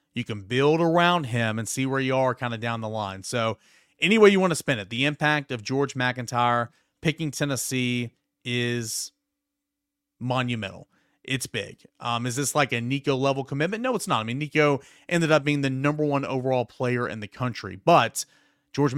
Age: 30-49